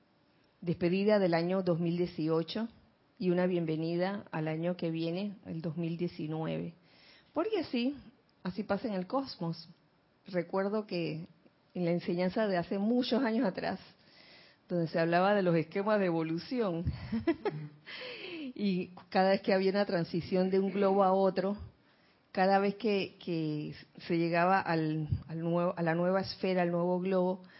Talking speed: 135 wpm